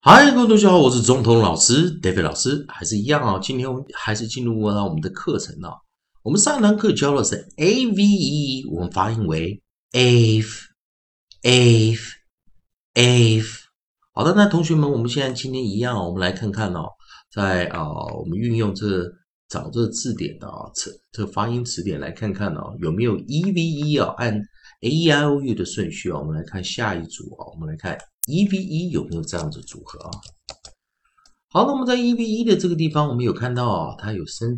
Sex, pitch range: male, 100-150 Hz